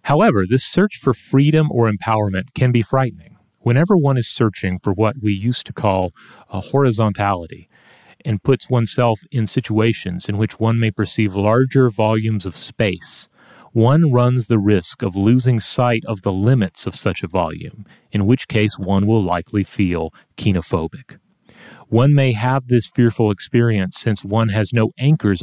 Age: 30-49